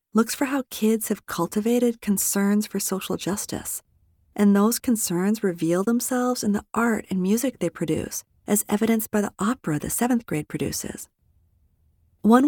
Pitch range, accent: 170-225 Hz, American